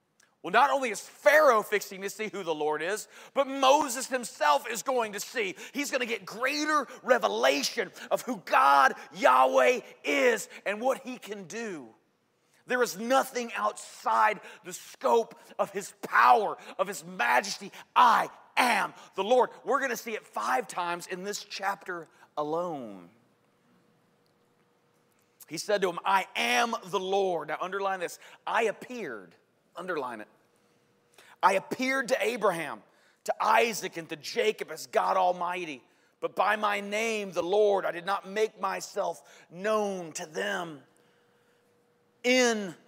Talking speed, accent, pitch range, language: 145 wpm, American, 195-265 Hz, English